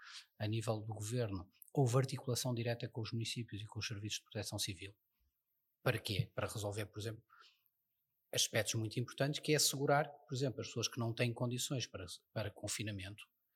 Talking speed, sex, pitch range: 175 wpm, male, 110-140 Hz